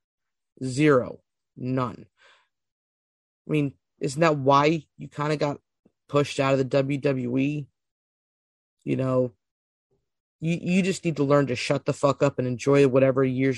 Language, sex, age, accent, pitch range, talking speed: English, male, 30-49, American, 130-155 Hz, 145 wpm